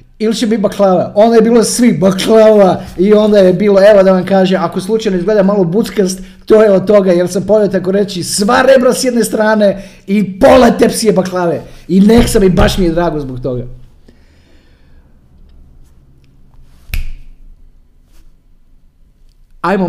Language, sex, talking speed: Croatian, male, 150 wpm